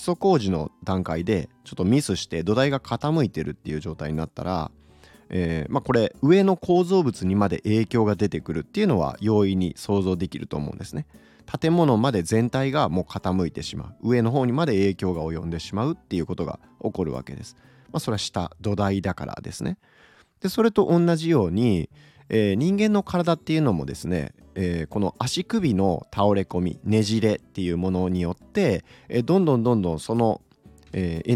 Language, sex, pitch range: Japanese, male, 90-150 Hz